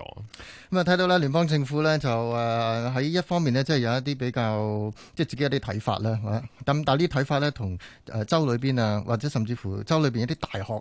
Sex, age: male, 30-49